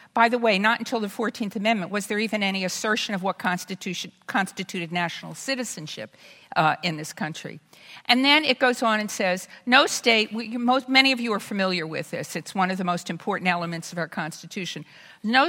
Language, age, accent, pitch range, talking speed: English, 50-69, American, 175-235 Hz, 200 wpm